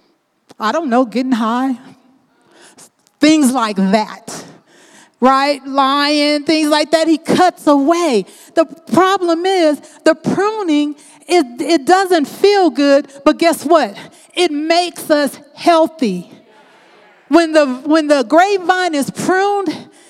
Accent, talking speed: American, 120 wpm